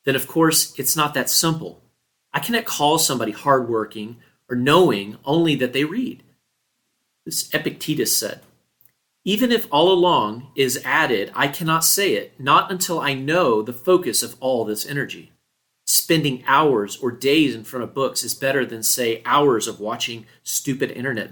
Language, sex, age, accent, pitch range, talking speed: English, male, 40-59, American, 120-155 Hz, 165 wpm